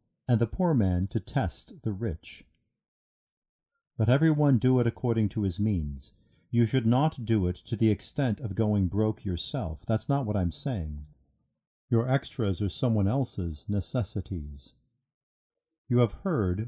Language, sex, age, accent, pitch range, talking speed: English, male, 50-69, American, 100-130 Hz, 150 wpm